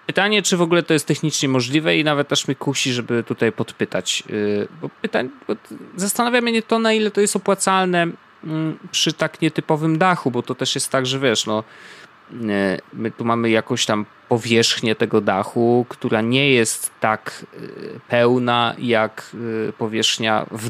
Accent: native